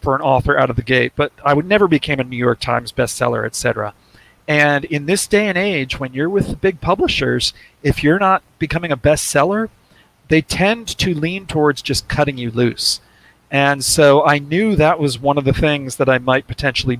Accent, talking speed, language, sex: American, 210 wpm, English, male